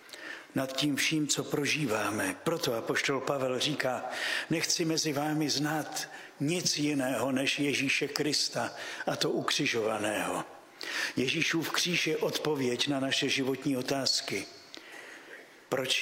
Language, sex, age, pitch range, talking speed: Slovak, male, 50-69, 135-155 Hz, 110 wpm